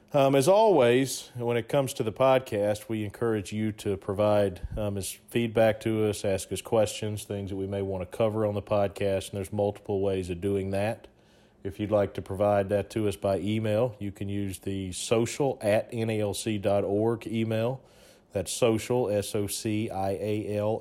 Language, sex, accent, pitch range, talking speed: English, male, American, 100-115 Hz, 170 wpm